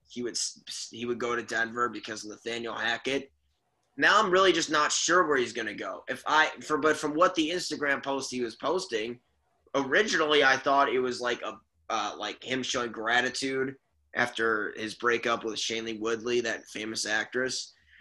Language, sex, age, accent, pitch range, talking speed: English, male, 20-39, American, 115-150 Hz, 185 wpm